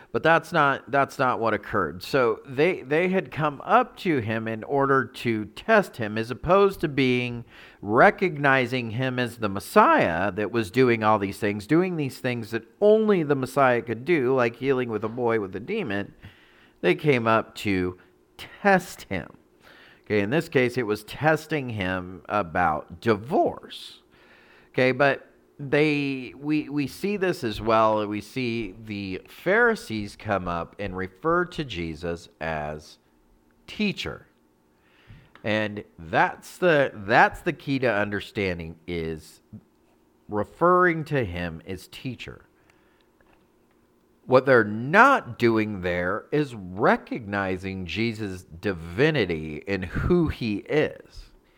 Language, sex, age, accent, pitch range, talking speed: English, male, 40-59, American, 100-145 Hz, 135 wpm